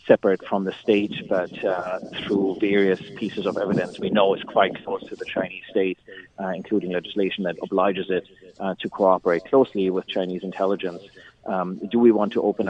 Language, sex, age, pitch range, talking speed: English, male, 30-49, 95-115 Hz, 185 wpm